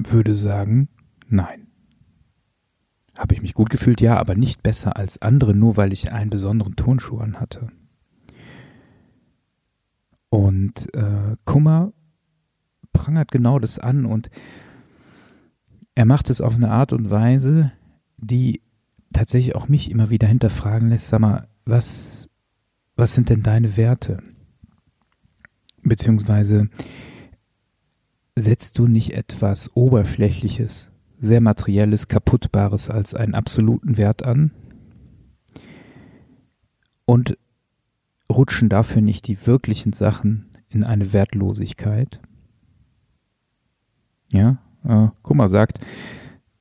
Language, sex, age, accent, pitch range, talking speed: German, male, 40-59, German, 105-125 Hz, 105 wpm